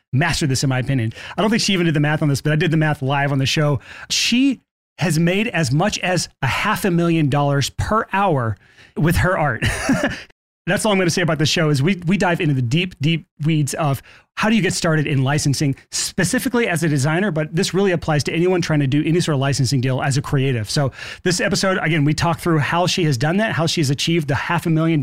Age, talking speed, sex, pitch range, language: 30-49, 255 wpm, male, 145-185 Hz, English